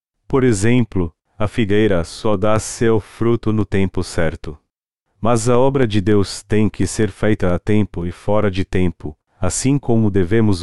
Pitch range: 95-115 Hz